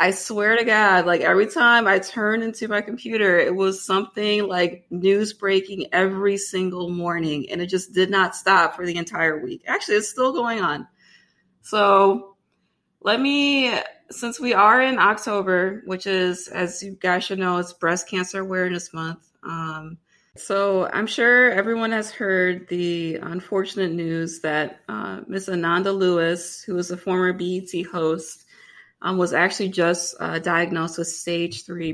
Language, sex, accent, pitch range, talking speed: English, female, American, 170-195 Hz, 160 wpm